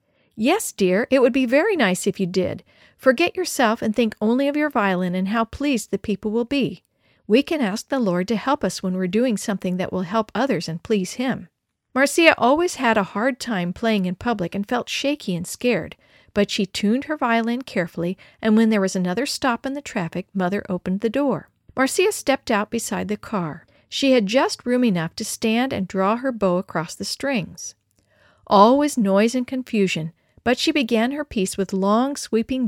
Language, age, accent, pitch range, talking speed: English, 50-69, American, 190-255 Hz, 200 wpm